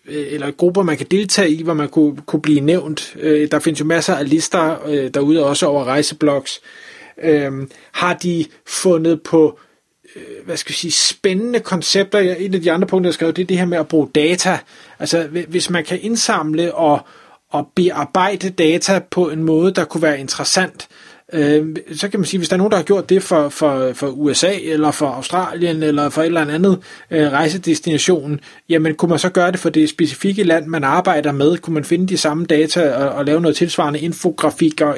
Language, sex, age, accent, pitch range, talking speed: Danish, male, 30-49, native, 150-185 Hz, 195 wpm